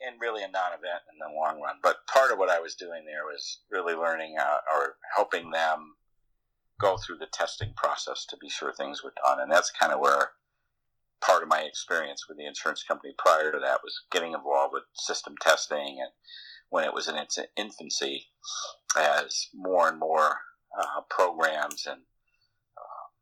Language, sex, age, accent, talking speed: English, male, 50-69, American, 185 wpm